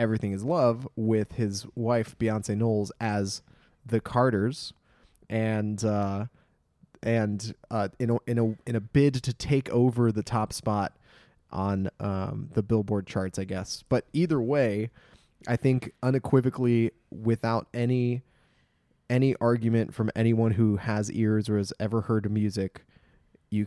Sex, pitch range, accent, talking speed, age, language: male, 105-130 Hz, American, 145 wpm, 20-39, English